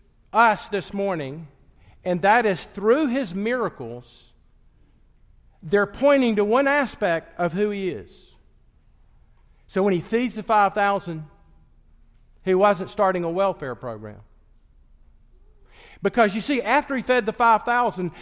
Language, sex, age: English, male, 50-69